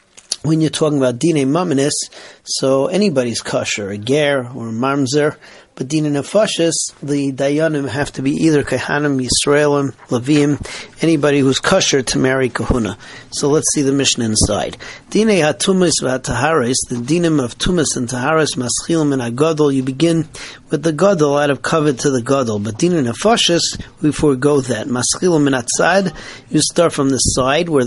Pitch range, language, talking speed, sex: 130-160 Hz, English, 160 wpm, male